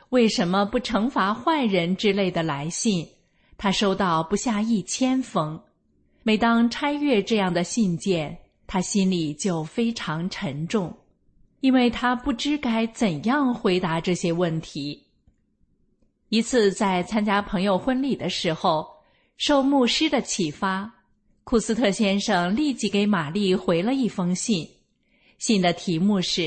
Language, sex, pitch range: English, female, 180-230 Hz